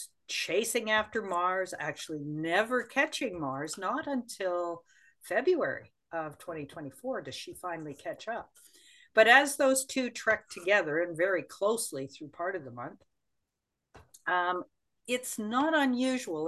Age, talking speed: 50-69, 125 wpm